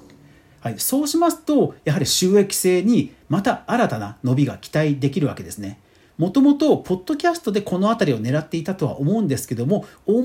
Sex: male